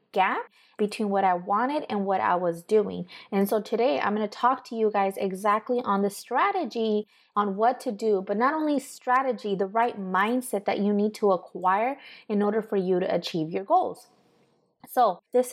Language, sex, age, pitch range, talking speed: English, female, 20-39, 195-245 Hz, 195 wpm